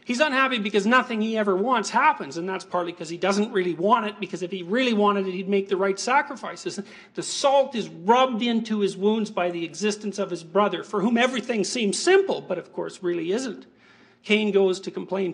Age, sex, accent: 50-69, male, American